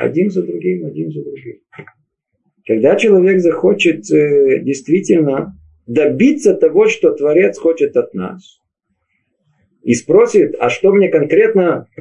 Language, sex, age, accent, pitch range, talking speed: Russian, male, 50-69, native, 145-240 Hz, 115 wpm